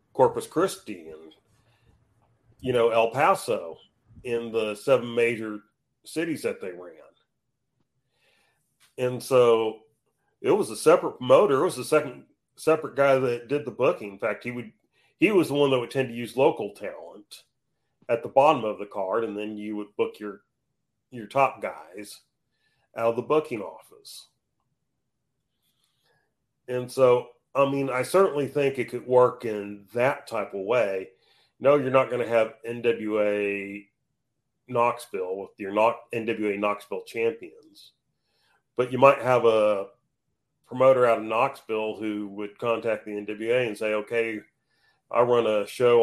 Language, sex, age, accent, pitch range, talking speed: English, male, 40-59, American, 110-140 Hz, 150 wpm